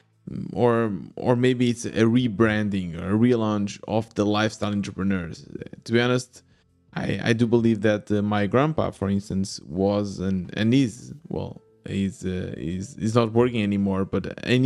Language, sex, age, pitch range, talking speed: English, male, 20-39, 105-125 Hz, 155 wpm